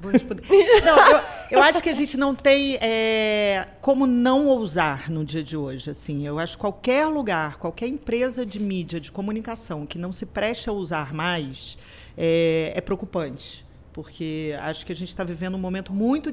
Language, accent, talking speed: Portuguese, Brazilian, 170 wpm